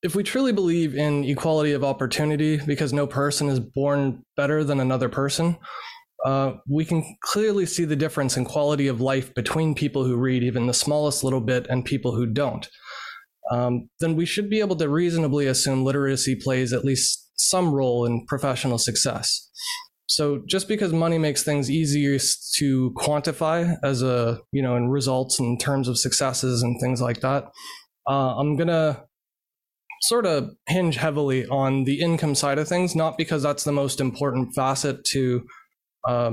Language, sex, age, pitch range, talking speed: English, male, 20-39, 130-160 Hz, 175 wpm